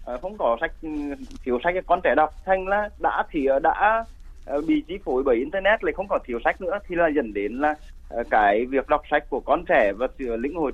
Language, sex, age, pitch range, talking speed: Vietnamese, male, 20-39, 125-160 Hz, 220 wpm